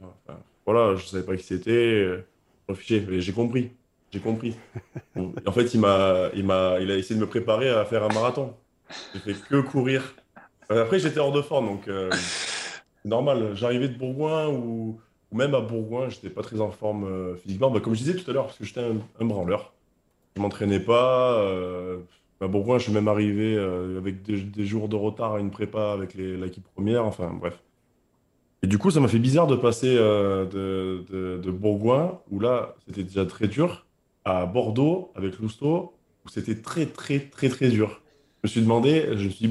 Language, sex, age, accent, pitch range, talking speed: French, male, 20-39, French, 95-125 Hz, 210 wpm